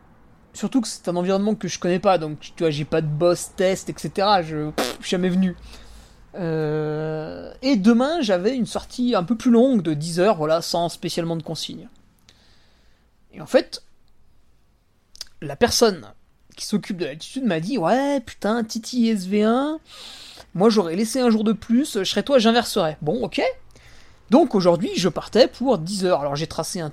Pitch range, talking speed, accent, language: 165-220 Hz, 180 wpm, French, French